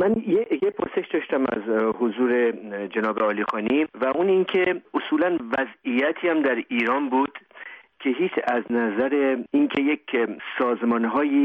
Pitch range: 120-170 Hz